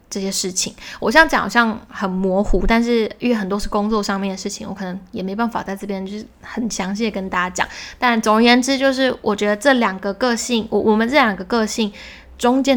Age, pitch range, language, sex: 10-29, 200-245 Hz, Chinese, female